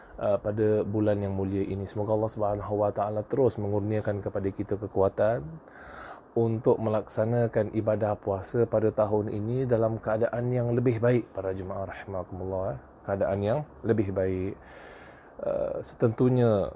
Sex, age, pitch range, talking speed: male, 20-39, 100-115 Hz, 115 wpm